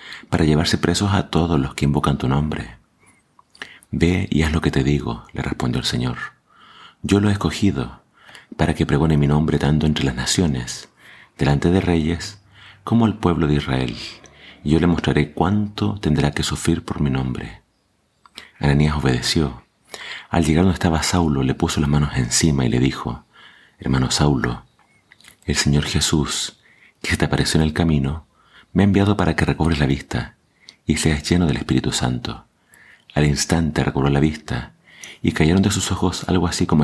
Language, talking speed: Spanish, 175 wpm